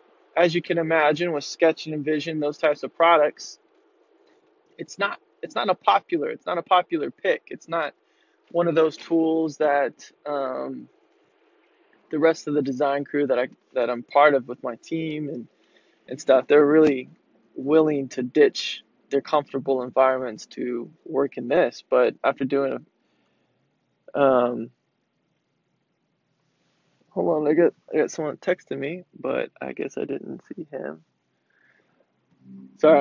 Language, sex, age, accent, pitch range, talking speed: English, male, 20-39, American, 135-165 Hz, 150 wpm